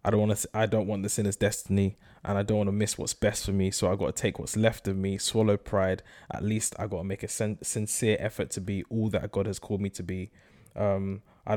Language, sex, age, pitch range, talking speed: English, male, 20-39, 100-120 Hz, 275 wpm